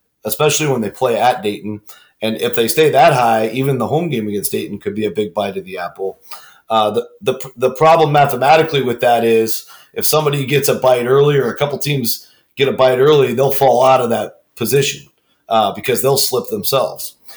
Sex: male